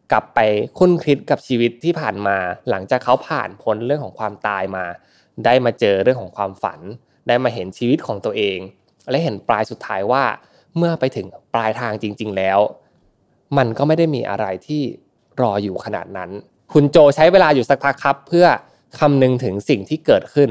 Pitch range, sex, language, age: 105-145 Hz, male, Thai, 20-39